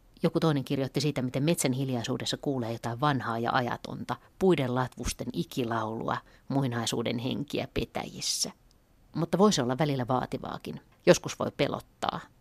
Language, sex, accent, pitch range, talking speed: Finnish, female, native, 125-150 Hz, 125 wpm